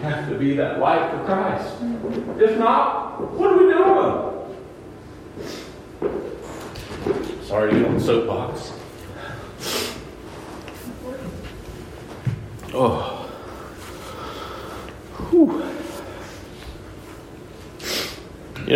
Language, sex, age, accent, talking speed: English, male, 40-59, American, 65 wpm